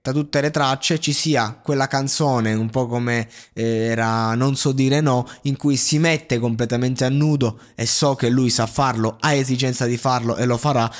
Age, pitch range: 20-39, 115-140 Hz